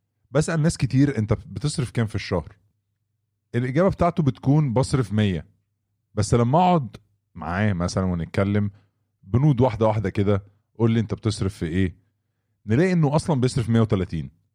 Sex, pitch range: male, 100-125 Hz